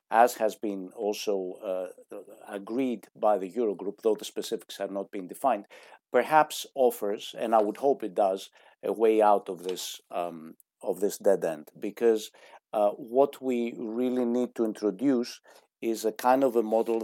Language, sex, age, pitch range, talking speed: English, male, 50-69, 100-120 Hz, 170 wpm